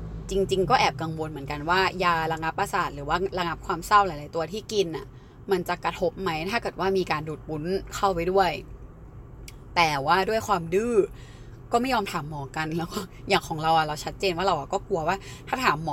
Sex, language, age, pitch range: female, Thai, 20-39, 160-215 Hz